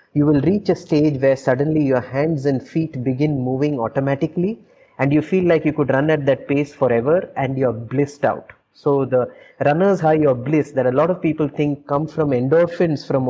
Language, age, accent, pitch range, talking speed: English, 20-39, Indian, 125-150 Hz, 205 wpm